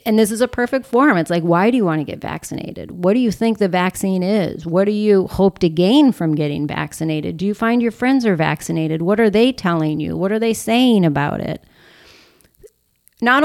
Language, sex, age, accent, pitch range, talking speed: English, female, 30-49, American, 165-220 Hz, 225 wpm